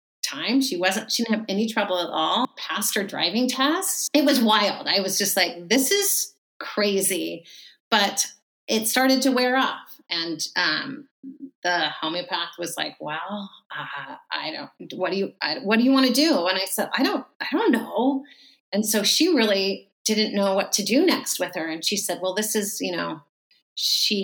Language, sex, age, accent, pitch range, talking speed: English, female, 30-49, American, 170-230 Hz, 195 wpm